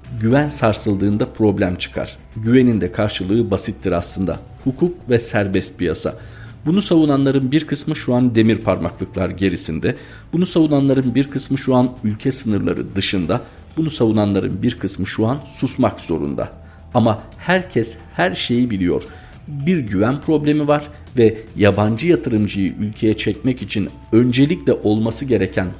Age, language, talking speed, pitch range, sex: 50-69, Turkish, 135 wpm, 100-130 Hz, male